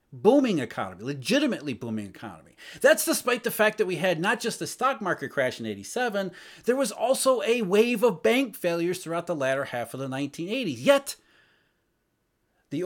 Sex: male